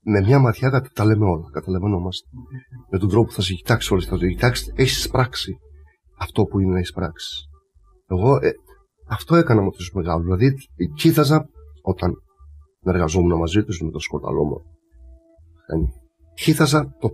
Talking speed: 170 wpm